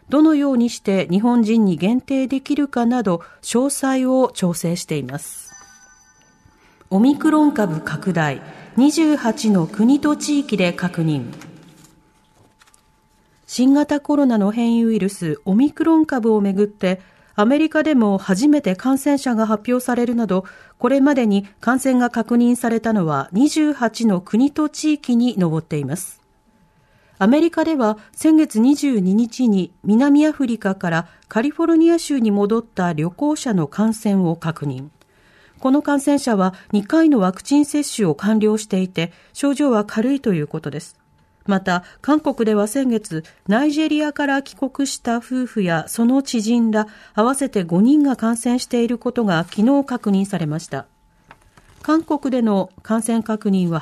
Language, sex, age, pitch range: Japanese, female, 40-59, 185-275 Hz